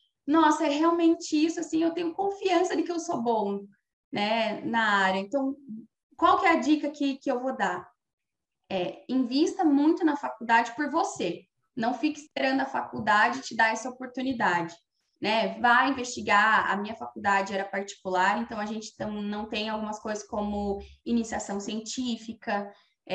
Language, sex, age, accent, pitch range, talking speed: Portuguese, female, 10-29, Brazilian, 200-260 Hz, 160 wpm